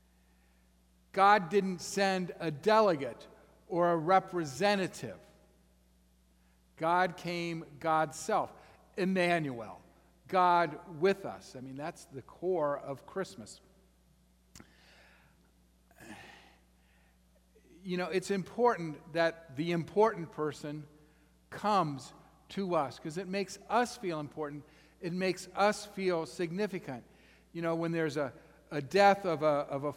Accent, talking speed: American, 110 wpm